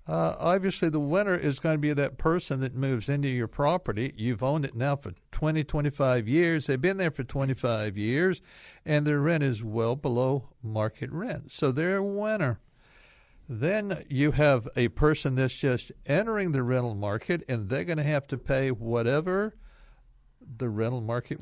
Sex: male